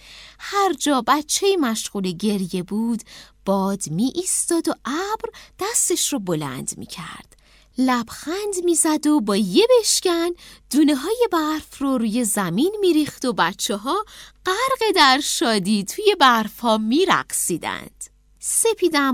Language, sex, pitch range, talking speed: Persian, female, 225-355 Hz, 115 wpm